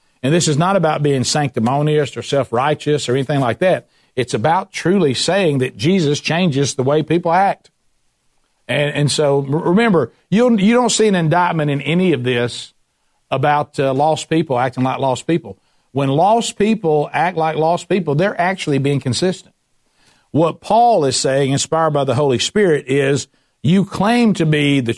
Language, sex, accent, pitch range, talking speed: English, male, American, 135-175 Hz, 170 wpm